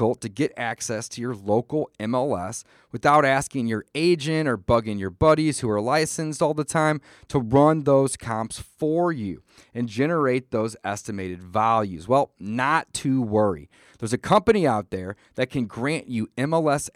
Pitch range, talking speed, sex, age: 110-155 Hz, 165 wpm, male, 30-49